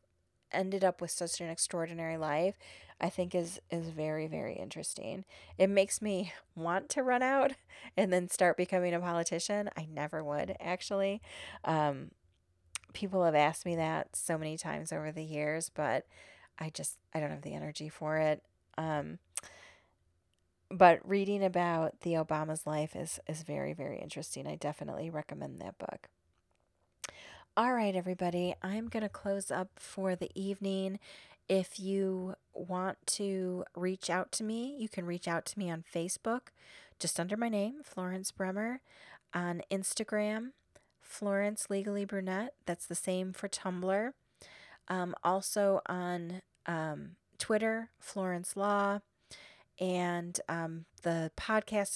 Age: 30-49